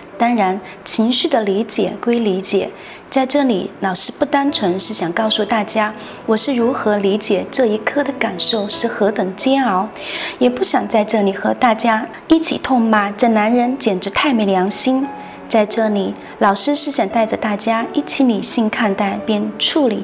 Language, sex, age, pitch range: Chinese, female, 20-39, 205-265 Hz